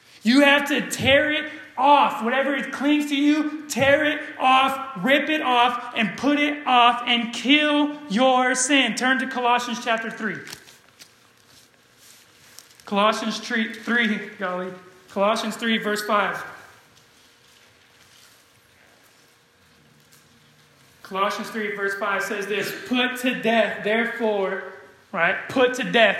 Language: English